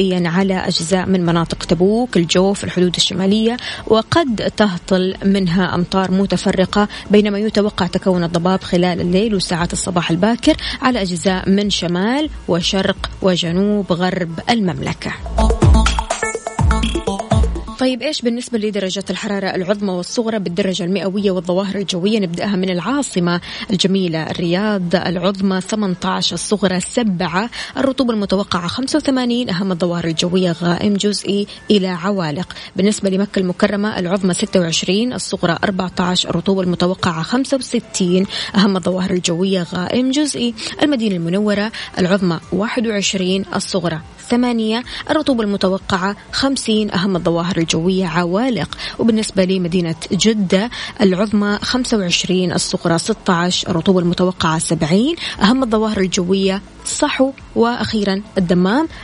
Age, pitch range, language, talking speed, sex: 20-39, 180-215 Hz, Arabic, 105 wpm, female